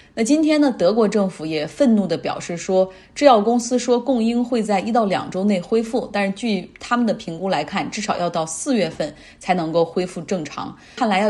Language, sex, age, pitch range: Chinese, female, 20-39, 180-240 Hz